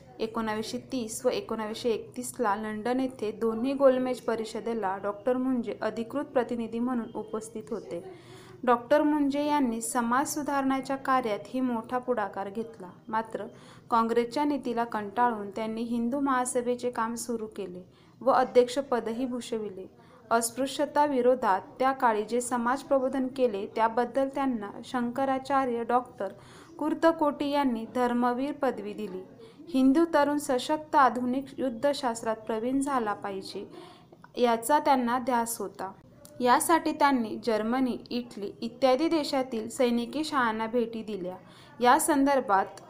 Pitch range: 225-265 Hz